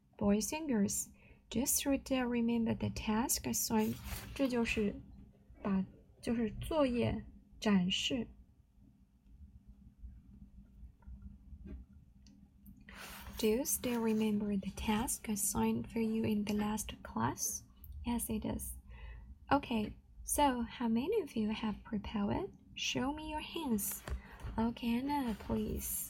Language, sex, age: Chinese, female, 20-39